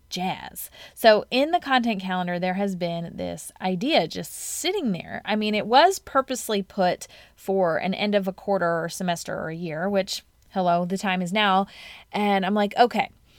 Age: 20-39